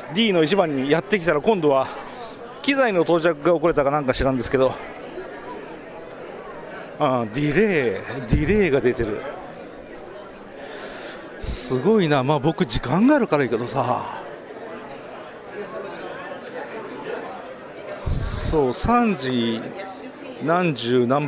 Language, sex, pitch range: Japanese, male, 125-195 Hz